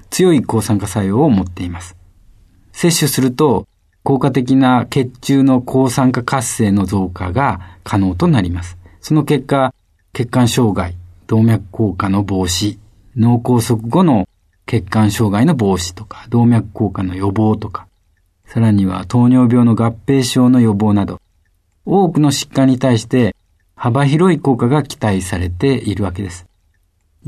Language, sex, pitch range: Japanese, male, 95-135 Hz